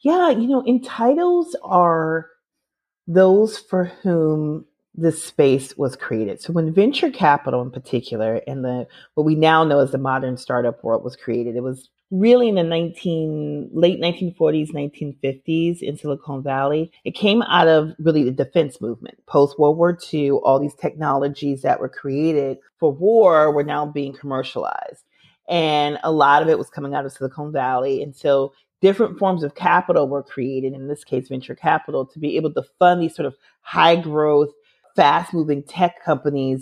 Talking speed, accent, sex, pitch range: 175 wpm, American, female, 140-175 Hz